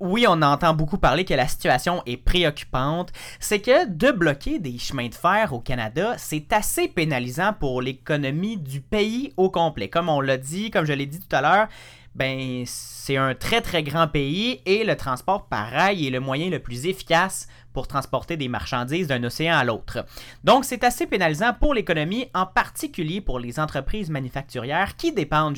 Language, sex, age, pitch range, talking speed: French, male, 30-49, 125-170 Hz, 185 wpm